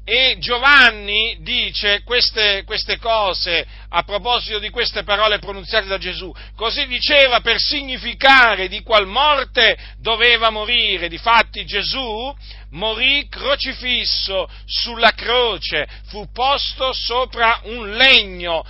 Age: 50-69